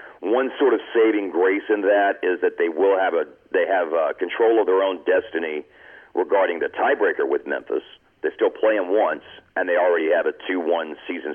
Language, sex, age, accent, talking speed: English, male, 40-59, American, 200 wpm